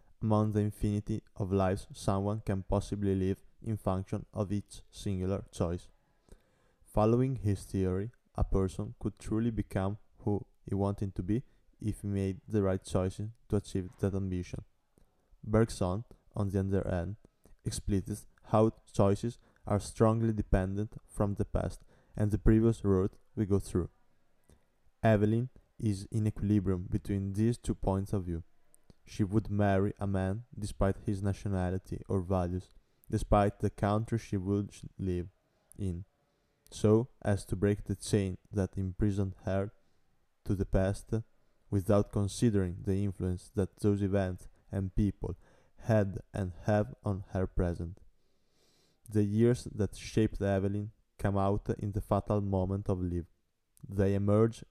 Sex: male